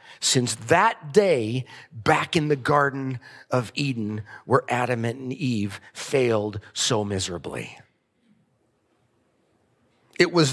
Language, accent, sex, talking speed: English, American, male, 105 wpm